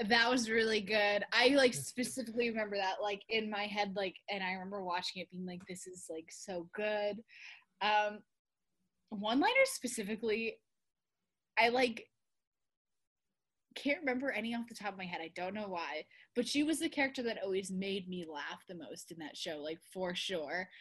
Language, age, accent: English, 10-29, American